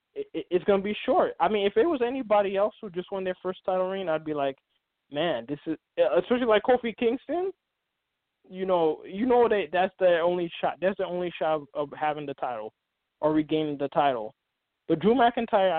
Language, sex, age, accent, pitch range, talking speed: English, male, 20-39, American, 150-190 Hz, 200 wpm